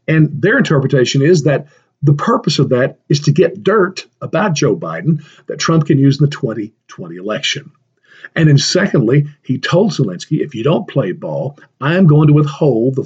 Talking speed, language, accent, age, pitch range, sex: 190 wpm, English, American, 50-69, 140-180 Hz, male